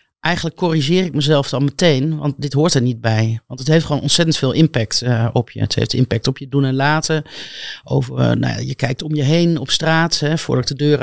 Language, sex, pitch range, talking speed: Dutch, male, 130-155 Hz, 230 wpm